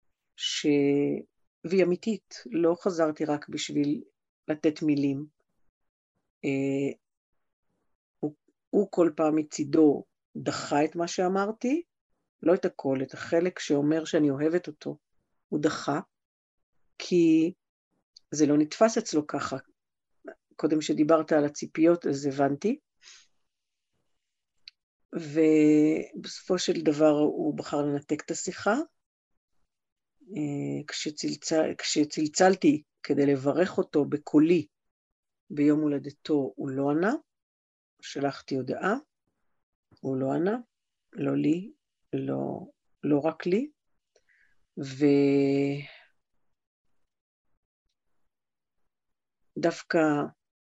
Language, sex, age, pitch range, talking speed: Hebrew, female, 50-69, 145-175 Hz, 85 wpm